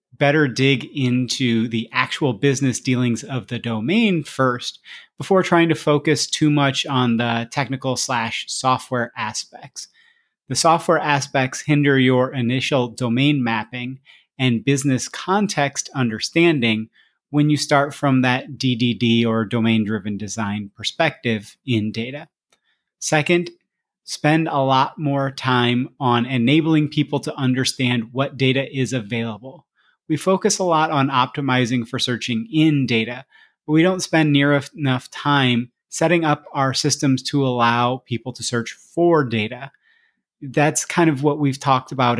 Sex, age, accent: male, 30-49, American